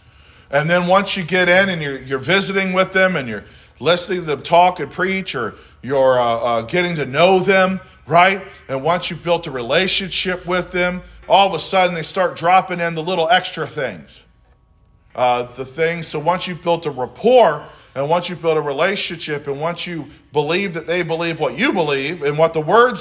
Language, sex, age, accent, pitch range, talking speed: English, male, 40-59, American, 140-180 Hz, 205 wpm